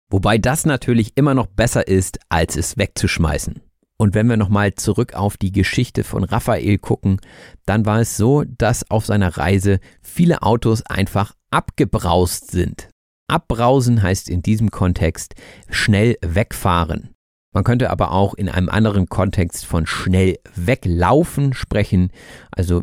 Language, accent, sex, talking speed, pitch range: German, German, male, 140 wpm, 95-120 Hz